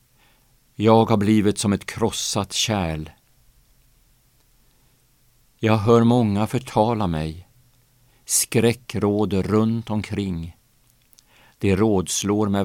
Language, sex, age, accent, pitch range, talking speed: Swedish, male, 50-69, Norwegian, 95-120 Hz, 85 wpm